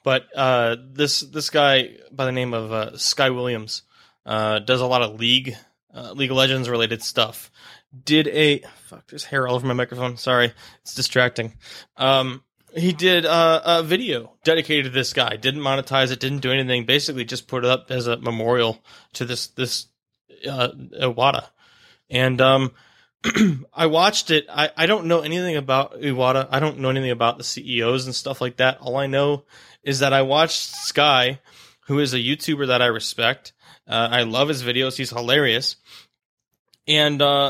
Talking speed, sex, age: 180 wpm, male, 20-39